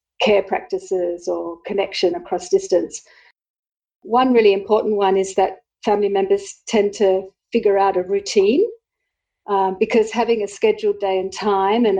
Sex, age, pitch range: female, 50-69, 195-260 Hz